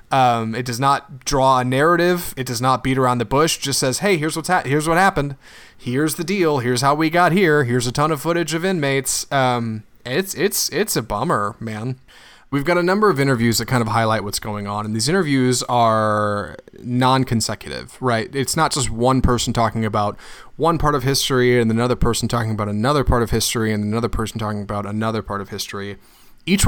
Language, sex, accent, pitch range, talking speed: English, male, American, 110-140 Hz, 215 wpm